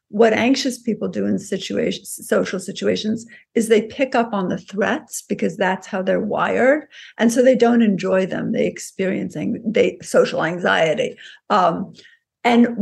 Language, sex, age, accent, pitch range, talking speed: English, female, 60-79, American, 195-240 Hz, 160 wpm